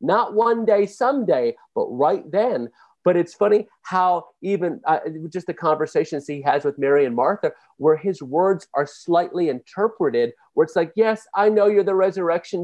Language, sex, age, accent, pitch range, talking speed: English, male, 40-59, American, 150-195 Hz, 175 wpm